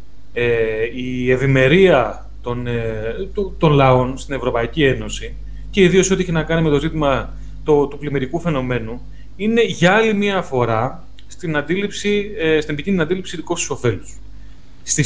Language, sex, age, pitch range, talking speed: Greek, male, 30-49, 125-180 Hz, 150 wpm